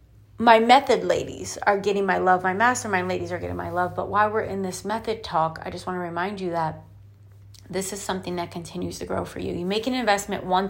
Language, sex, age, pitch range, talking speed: English, female, 30-49, 170-215 Hz, 235 wpm